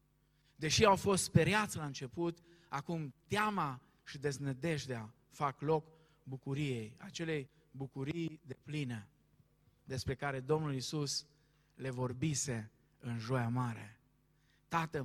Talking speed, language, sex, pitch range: 110 wpm, Romanian, male, 140-185 Hz